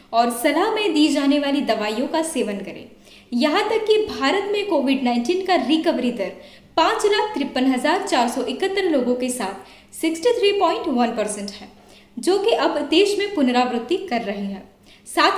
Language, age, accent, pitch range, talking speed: Hindi, 20-39, native, 240-360 Hz, 165 wpm